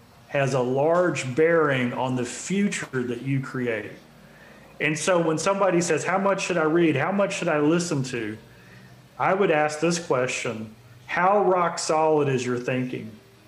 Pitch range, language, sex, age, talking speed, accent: 135-180 Hz, English, male, 40-59, 165 wpm, American